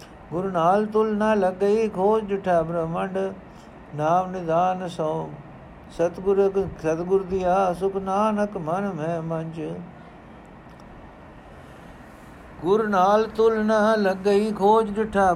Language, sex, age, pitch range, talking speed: Punjabi, male, 60-79, 140-185 Hz, 90 wpm